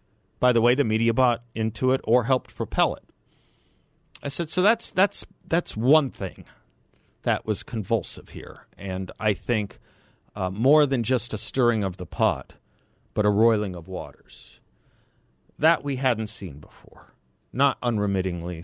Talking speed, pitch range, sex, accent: 155 wpm, 105-145 Hz, male, American